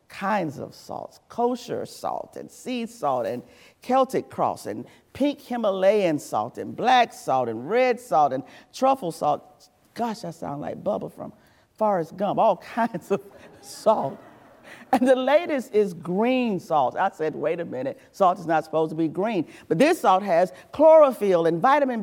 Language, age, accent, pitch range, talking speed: English, 40-59, American, 170-245 Hz, 165 wpm